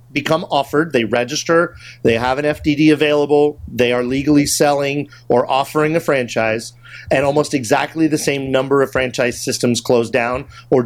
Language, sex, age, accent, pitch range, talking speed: English, male, 40-59, American, 125-150 Hz, 160 wpm